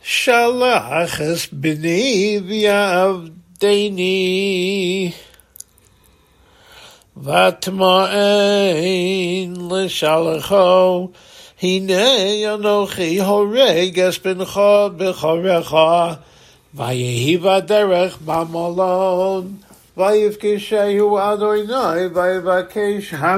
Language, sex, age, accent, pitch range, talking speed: English, male, 60-79, American, 170-205 Hz, 65 wpm